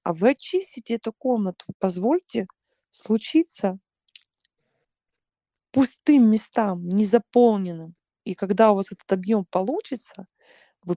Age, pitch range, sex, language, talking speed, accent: 20-39, 180-245 Hz, female, Russian, 100 wpm, native